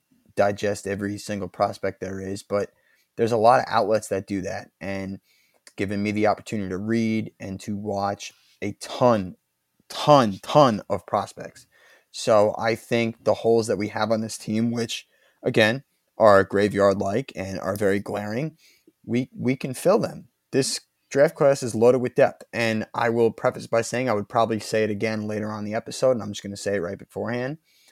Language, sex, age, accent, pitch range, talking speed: English, male, 20-39, American, 95-115 Hz, 185 wpm